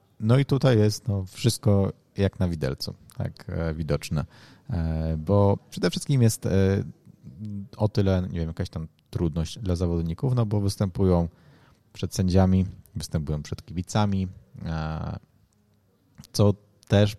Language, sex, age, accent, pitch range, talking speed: Polish, male, 30-49, native, 90-110 Hz, 120 wpm